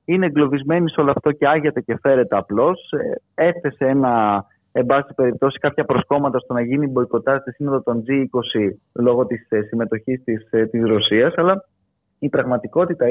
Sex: male